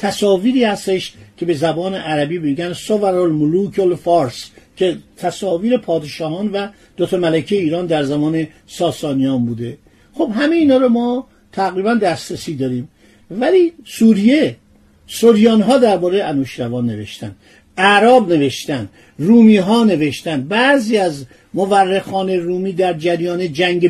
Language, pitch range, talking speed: Persian, 170-220 Hz, 115 wpm